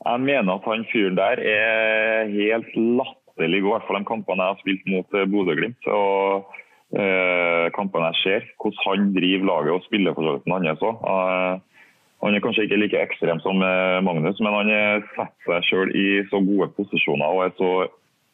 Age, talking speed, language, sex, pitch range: 20-39, 195 wpm, English, male, 95-115 Hz